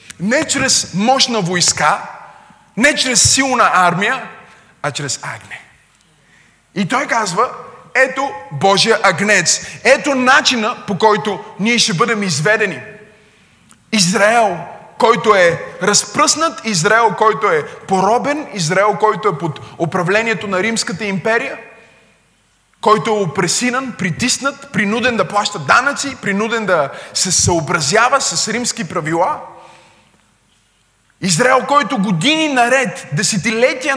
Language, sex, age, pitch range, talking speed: Bulgarian, male, 20-39, 180-230 Hz, 110 wpm